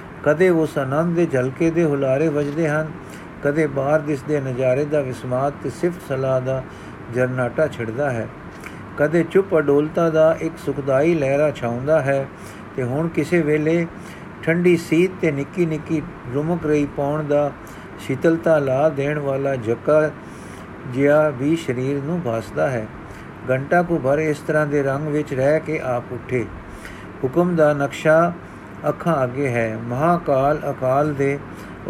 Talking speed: 145 wpm